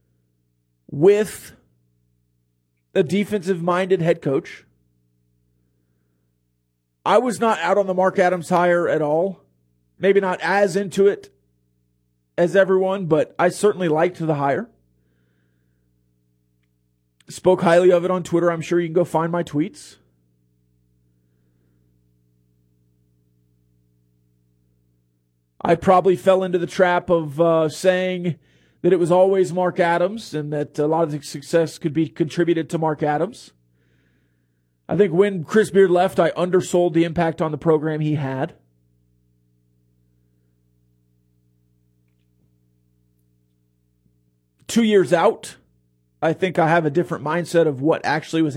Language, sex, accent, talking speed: English, male, American, 125 wpm